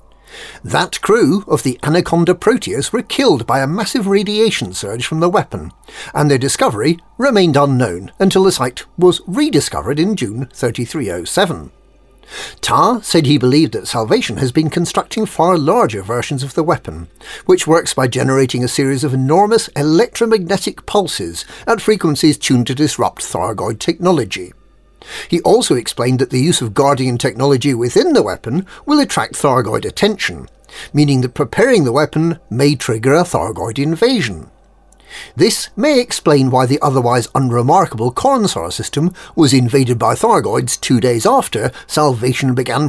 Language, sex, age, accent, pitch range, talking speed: English, male, 50-69, British, 125-170 Hz, 145 wpm